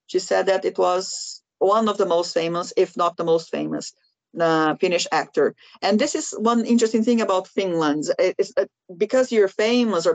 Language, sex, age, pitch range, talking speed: Finnish, female, 40-59, 170-230 Hz, 185 wpm